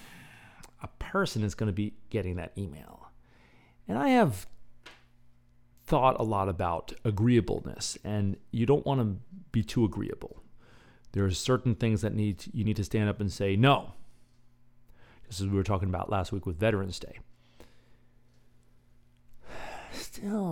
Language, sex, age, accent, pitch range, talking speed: English, male, 40-59, American, 100-120 Hz, 145 wpm